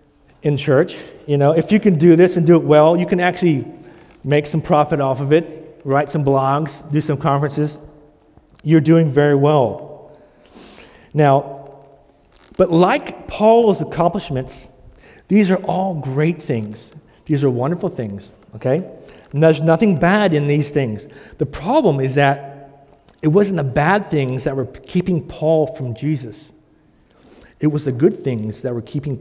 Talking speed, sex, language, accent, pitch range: 160 wpm, male, English, American, 135-165 Hz